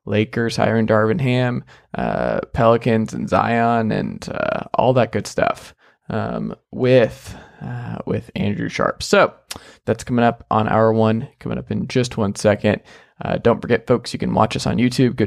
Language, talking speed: English, 175 wpm